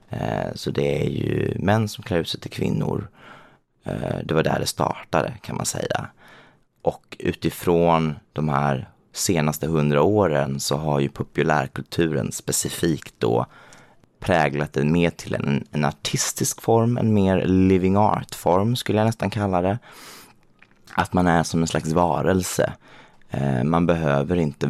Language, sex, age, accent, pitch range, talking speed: Swedish, male, 30-49, native, 70-95 Hz, 140 wpm